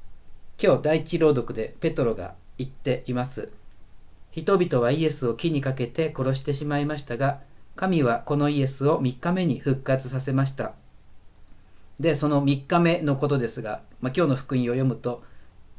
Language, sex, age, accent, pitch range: Japanese, male, 40-59, native, 115-150 Hz